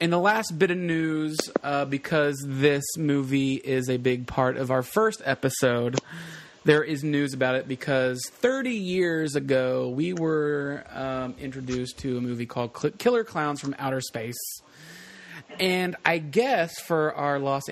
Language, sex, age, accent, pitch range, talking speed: English, male, 30-49, American, 125-155 Hz, 160 wpm